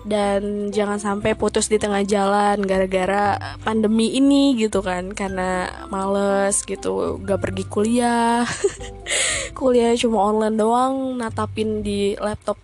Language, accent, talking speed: Indonesian, native, 120 wpm